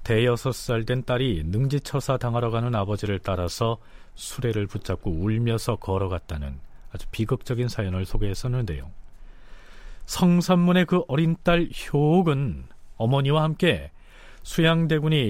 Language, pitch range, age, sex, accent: Korean, 105-160 Hz, 40-59, male, native